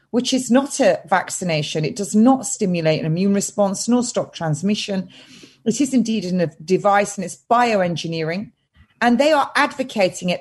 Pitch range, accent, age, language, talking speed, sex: 185-265 Hz, British, 40-59, English, 160 wpm, female